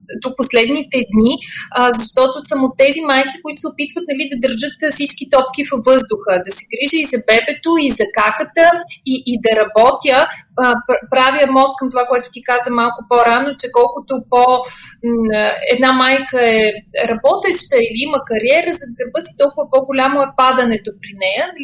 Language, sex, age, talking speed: Bulgarian, female, 20-39, 165 wpm